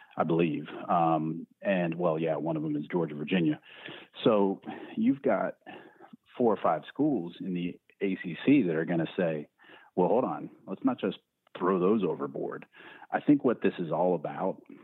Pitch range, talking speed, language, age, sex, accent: 85-110 Hz, 175 wpm, English, 40-59, male, American